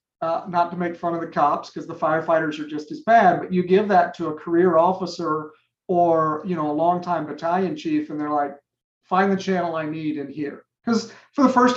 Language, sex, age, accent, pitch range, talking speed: English, male, 40-59, American, 155-185 Hz, 225 wpm